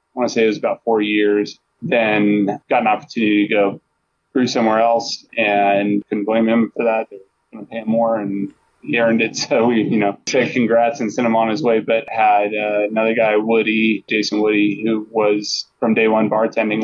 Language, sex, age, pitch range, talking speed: English, male, 20-39, 105-115 Hz, 215 wpm